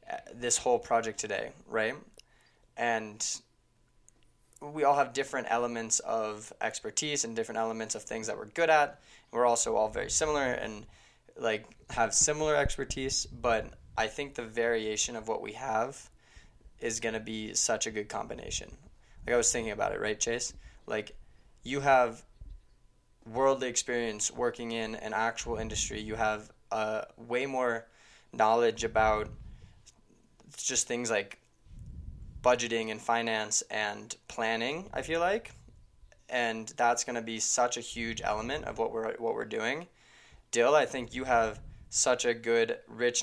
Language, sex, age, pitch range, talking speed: English, male, 20-39, 110-120 Hz, 150 wpm